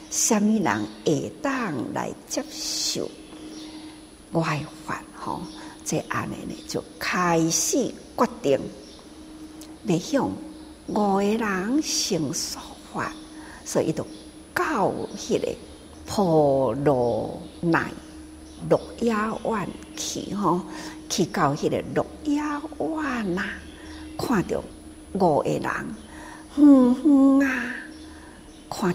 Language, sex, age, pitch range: Chinese, female, 60-79, 210-315 Hz